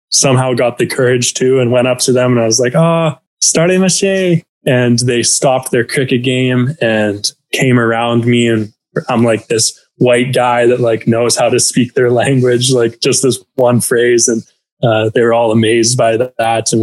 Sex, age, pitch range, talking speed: male, 20-39, 110-125 Hz, 205 wpm